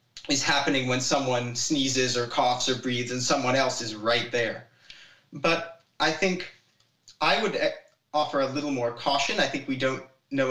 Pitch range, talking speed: 125-145 Hz, 170 wpm